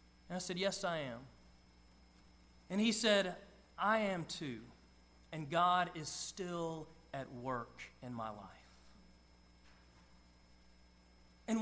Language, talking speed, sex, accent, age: English, 115 wpm, male, American, 40-59